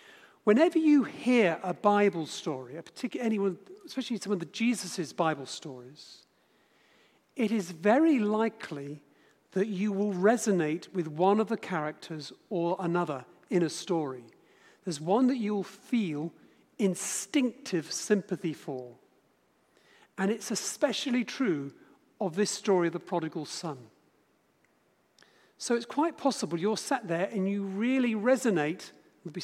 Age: 50-69